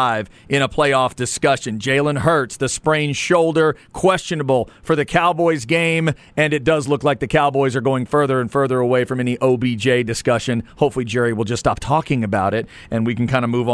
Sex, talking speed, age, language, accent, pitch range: male, 195 wpm, 40-59, English, American, 125-165 Hz